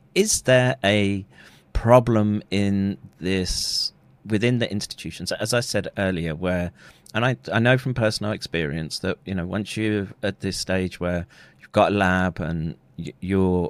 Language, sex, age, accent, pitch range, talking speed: English, male, 40-59, British, 80-105 Hz, 160 wpm